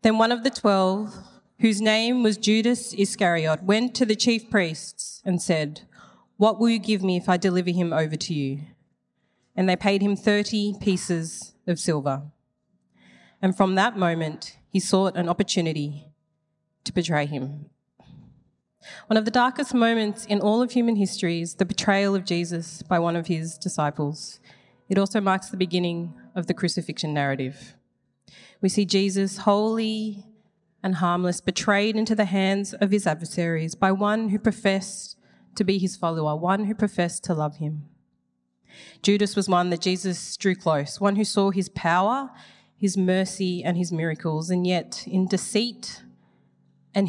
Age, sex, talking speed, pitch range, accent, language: 30-49, female, 160 wpm, 160-205 Hz, Australian, English